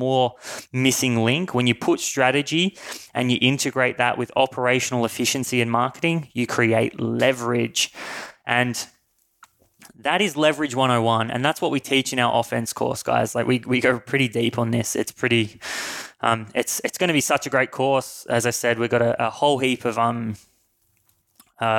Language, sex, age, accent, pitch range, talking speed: English, male, 20-39, Australian, 115-125 Hz, 180 wpm